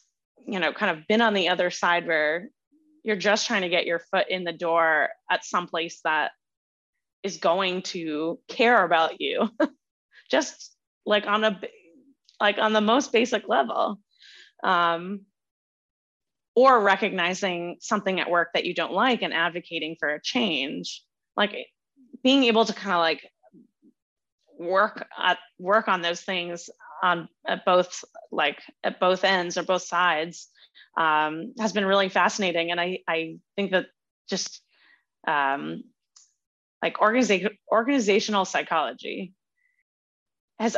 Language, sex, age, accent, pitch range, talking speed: English, female, 20-39, American, 170-225 Hz, 140 wpm